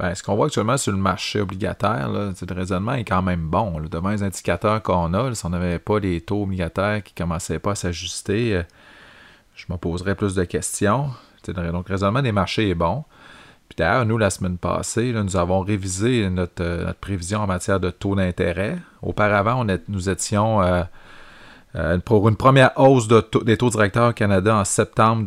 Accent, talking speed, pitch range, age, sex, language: Canadian, 215 wpm, 95-115 Hz, 30-49, male, French